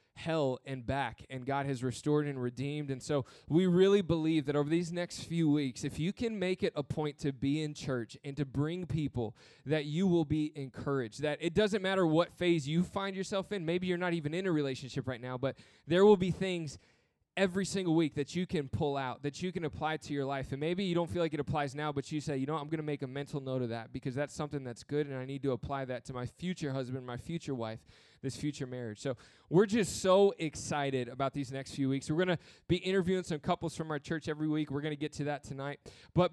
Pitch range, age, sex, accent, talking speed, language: 135-170 Hz, 20-39, male, American, 255 wpm, English